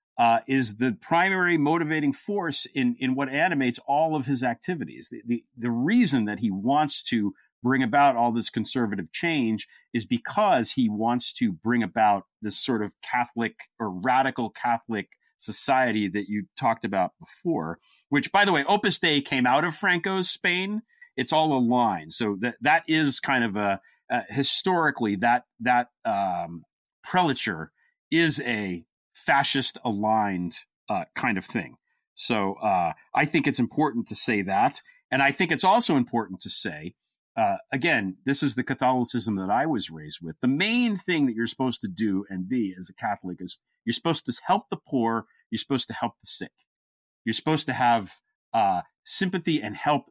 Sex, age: male, 40-59